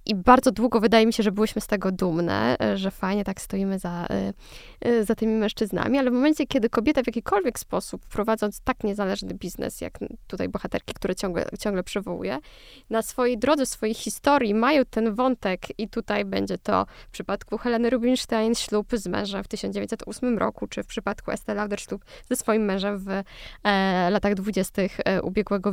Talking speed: 175 wpm